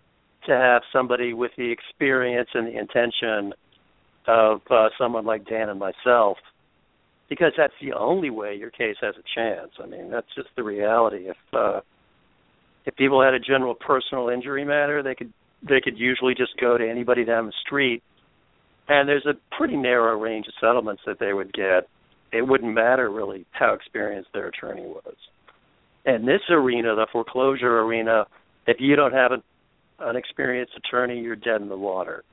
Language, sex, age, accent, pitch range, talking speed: English, male, 60-79, American, 110-125 Hz, 175 wpm